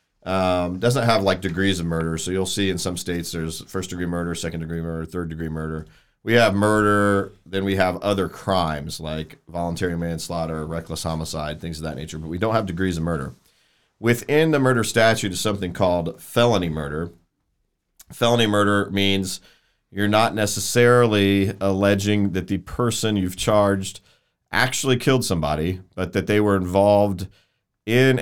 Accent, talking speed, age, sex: American, 165 wpm, 40-59, male